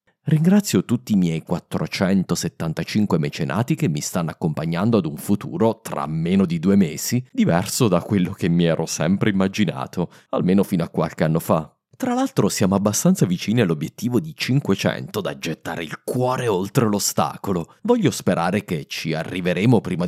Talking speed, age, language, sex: 155 wpm, 30-49, Italian, male